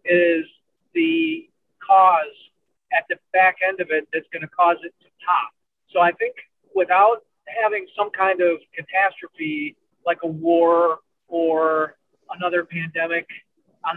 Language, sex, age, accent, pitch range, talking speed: English, male, 40-59, American, 170-280 Hz, 140 wpm